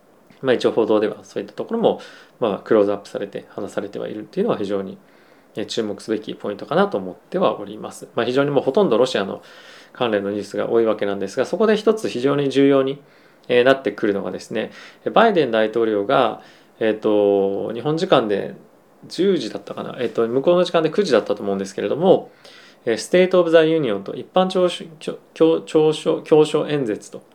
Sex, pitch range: male, 105-155 Hz